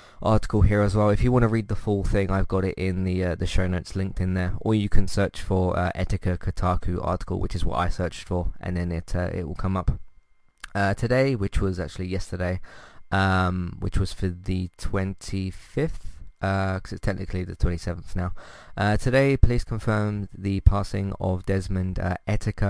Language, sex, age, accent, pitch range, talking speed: English, male, 20-39, British, 95-105 Hz, 200 wpm